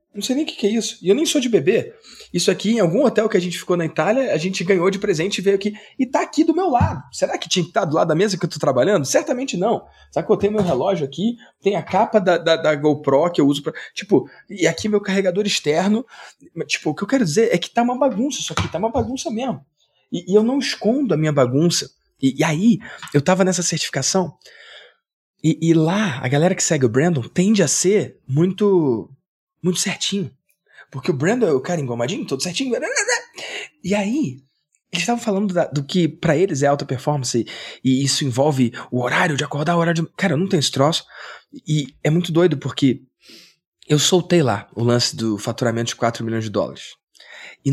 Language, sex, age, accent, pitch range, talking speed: Portuguese, male, 20-39, Brazilian, 140-200 Hz, 230 wpm